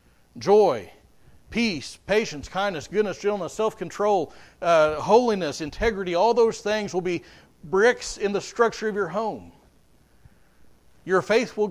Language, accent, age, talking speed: English, American, 40-59, 125 wpm